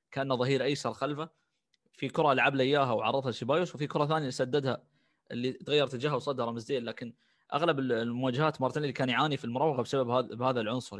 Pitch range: 120-145 Hz